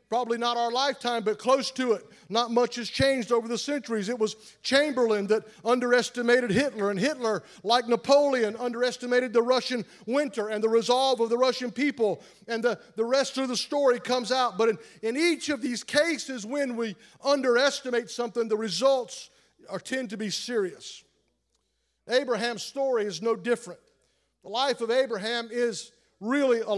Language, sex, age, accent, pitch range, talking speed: English, male, 50-69, American, 220-255 Hz, 170 wpm